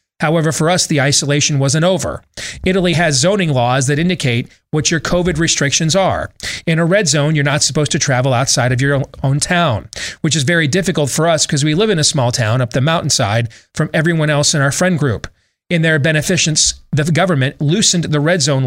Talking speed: 205 wpm